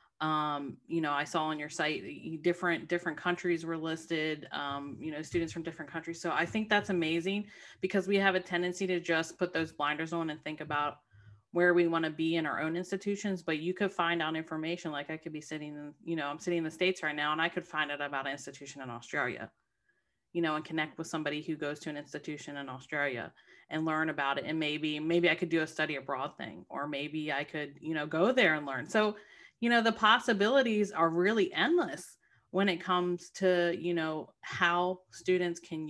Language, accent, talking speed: English, American, 220 wpm